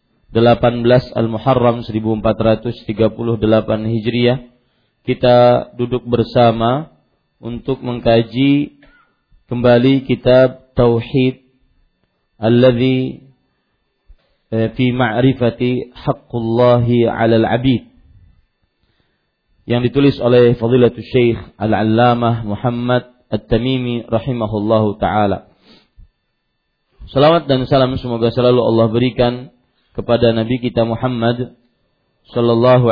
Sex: male